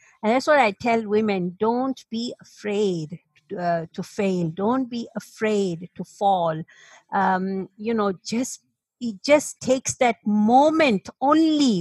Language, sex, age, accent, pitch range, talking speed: English, female, 50-69, Indian, 195-250 Hz, 140 wpm